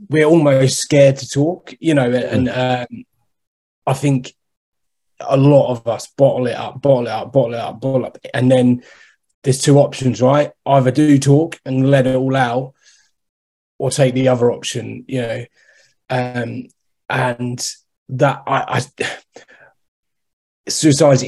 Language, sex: English, male